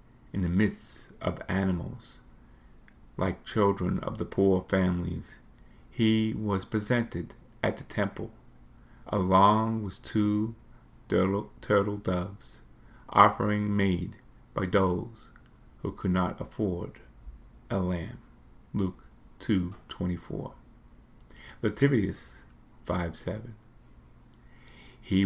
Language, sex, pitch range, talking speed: English, male, 90-110 Hz, 95 wpm